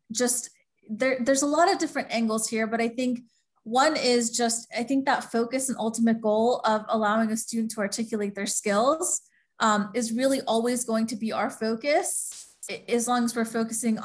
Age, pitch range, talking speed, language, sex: 20-39, 215-255 Hz, 190 wpm, English, female